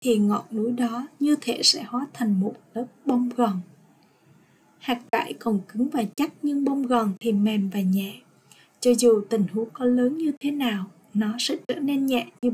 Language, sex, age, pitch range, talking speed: Vietnamese, female, 20-39, 215-255 Hz, 195 wpm